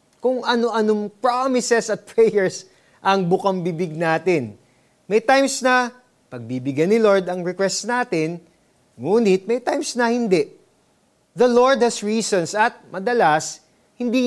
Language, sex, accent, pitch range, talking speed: Filipino, male, native, 150-220 Hz, 125 wpm